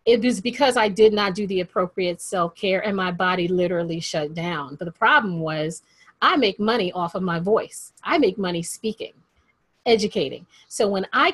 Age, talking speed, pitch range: 40-59, 185 wpm, 175-235 Hz